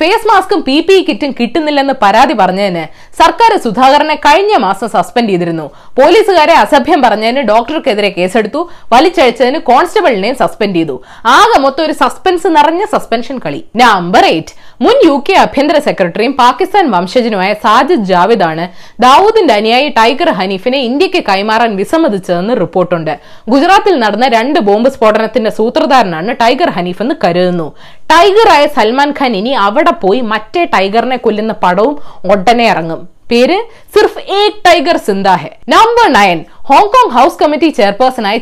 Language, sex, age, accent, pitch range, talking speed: Malayalam, female, 20-39, native, 205-325 Hz, 110 wpm